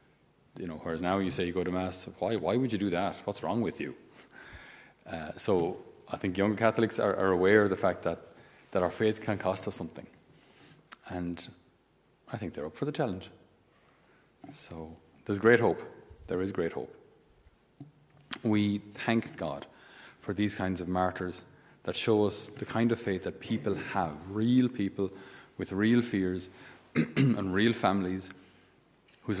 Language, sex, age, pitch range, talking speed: English, male, 30-49, 90-105 Hz, 170 wpm